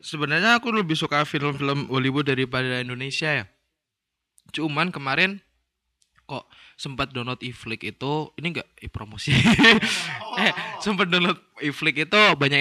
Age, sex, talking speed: 20-39, male, 130 wpm